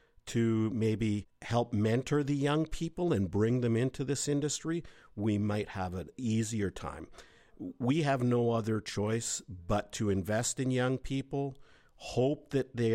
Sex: male